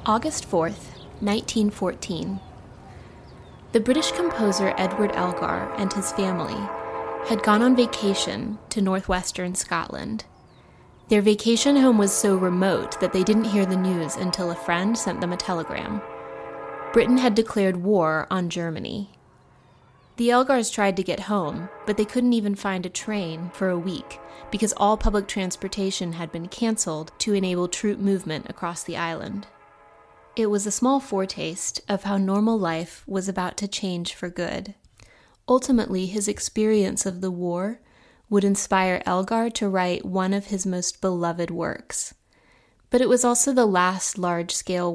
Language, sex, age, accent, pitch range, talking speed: English, female, 20-39, American, 180-215 Hz, 150 wpm